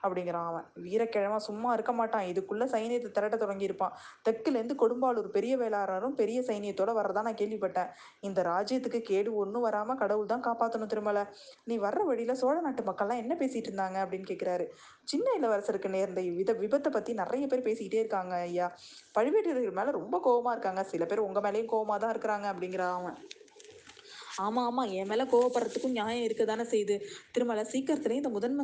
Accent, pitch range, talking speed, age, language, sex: native, 195-250 Hz, 155 wpm, 20-39, Tamil, female